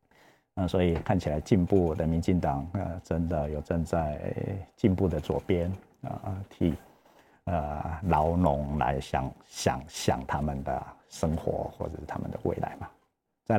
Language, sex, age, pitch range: Chinese, male, 50-69, 85-105 Hz